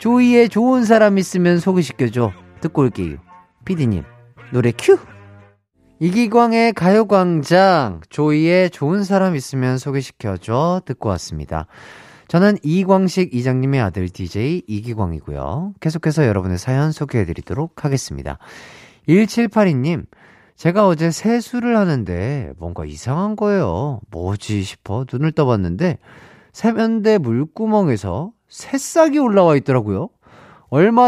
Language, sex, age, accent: Korean, male, 40-59, native